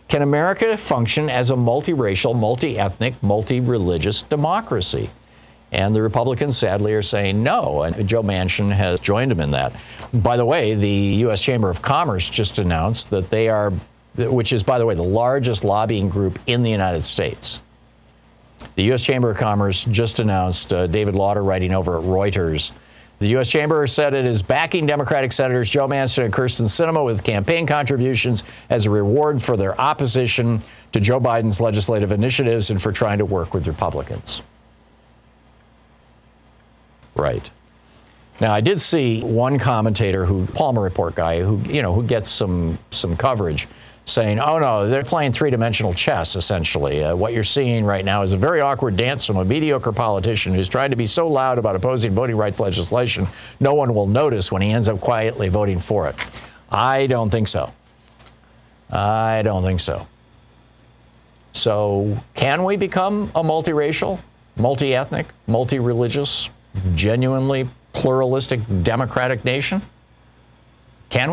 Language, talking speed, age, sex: English, 155 wpm, 50-69, male